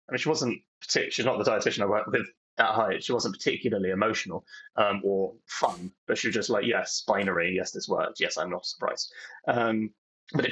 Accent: British